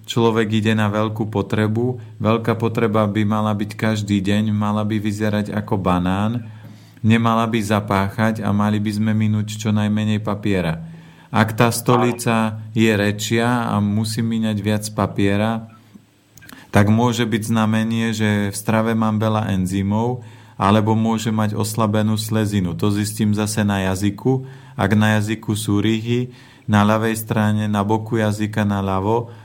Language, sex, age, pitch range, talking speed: Slovak, male, 40-59, 100-110 Hz, 145 wpm